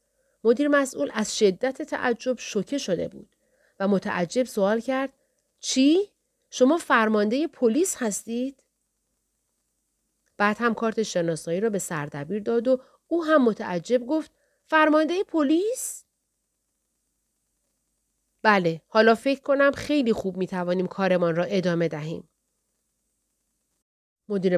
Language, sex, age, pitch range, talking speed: Persian, female, 40-59, 185-270 Hz, 110 wpm